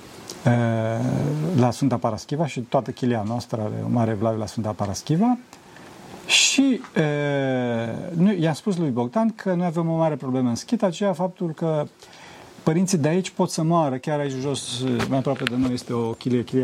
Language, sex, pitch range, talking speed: Romanian, male, 120-185 Hz, 170 wpm